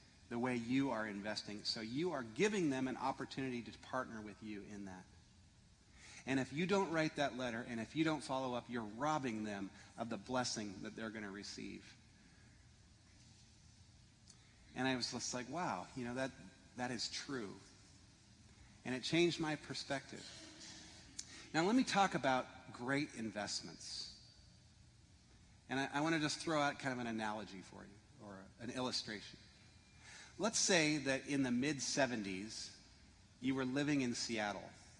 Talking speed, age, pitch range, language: 160 wpm, 40-59, 105-140 Hz, English